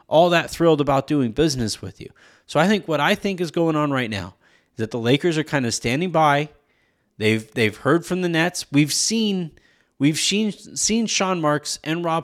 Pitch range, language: 140-185 Hz, English